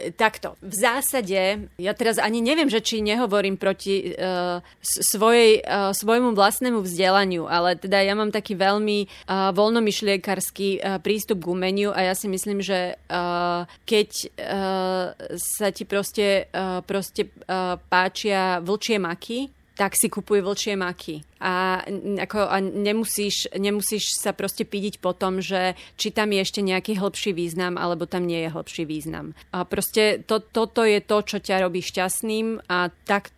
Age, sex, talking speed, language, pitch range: 30-49, female, 155 wpm, Slovak, 185-210 Hz